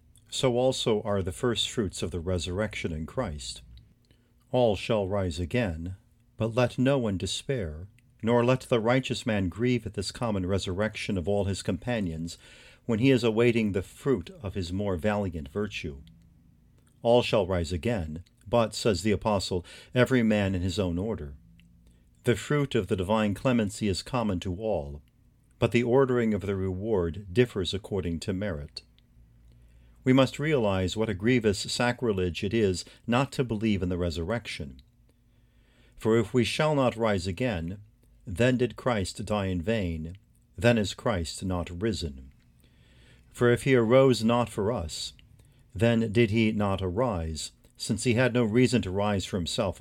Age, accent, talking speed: 50-69, American, 160 wpm